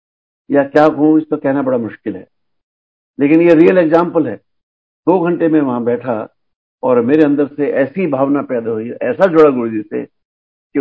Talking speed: 180 wpm